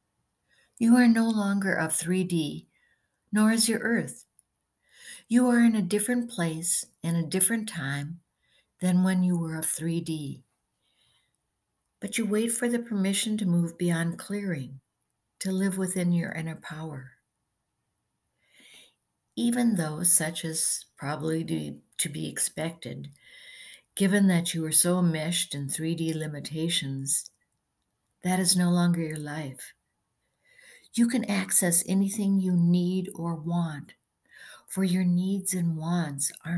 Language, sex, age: English, female, 60-79